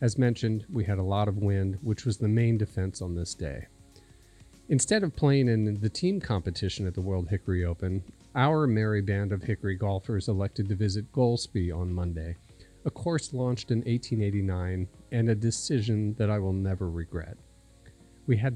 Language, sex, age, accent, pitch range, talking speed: English, male, 40-59, American, 95-120 Hz, 180 wpm